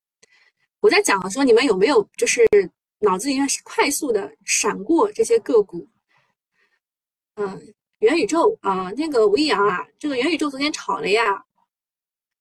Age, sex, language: 20-39, female, Chinese